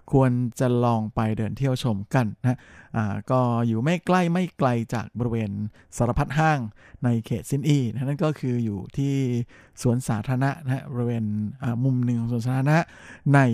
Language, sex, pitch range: Thai, male, 115-135 Hz